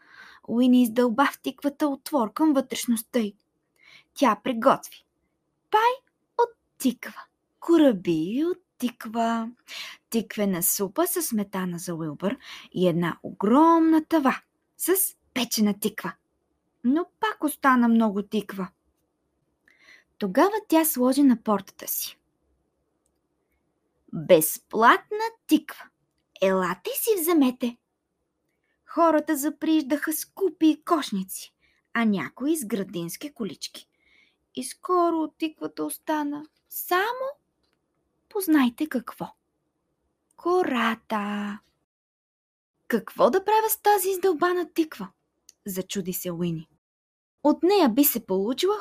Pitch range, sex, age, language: 210-330 Hz, female, 20-39, Bulgarian